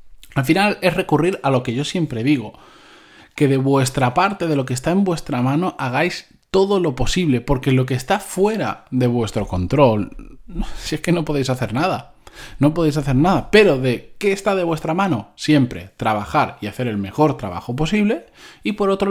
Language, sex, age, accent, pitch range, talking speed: Spanish, male, 20-39, Spanish, 115-150 Hz, 195 wpm